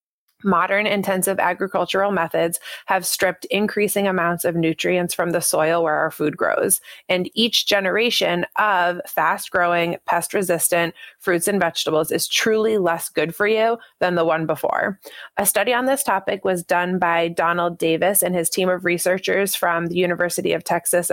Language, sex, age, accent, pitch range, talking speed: English, female, 20-39, American, 175-205 Hz, 160 wpm